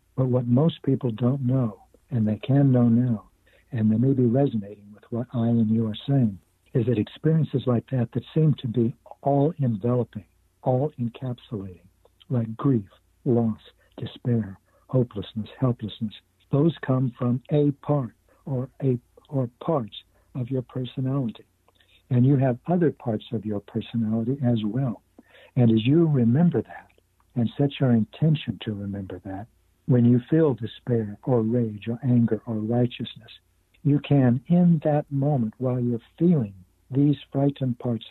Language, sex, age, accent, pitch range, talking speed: English, male, 60-79, American, 110-130 Hz, 150 wpm